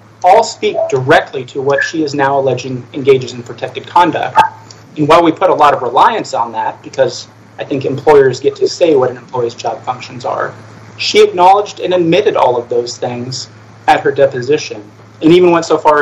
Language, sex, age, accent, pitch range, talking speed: English, male, 30-49, American, 120-180 Hz, 195 wpm